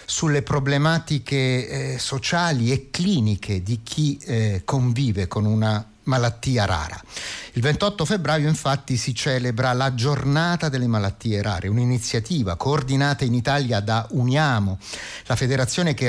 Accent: native